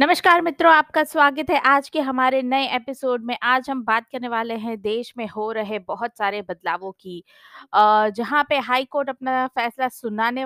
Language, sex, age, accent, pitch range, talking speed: Hindi, female, 20-39, native, 210-255 Hz, 185 wpm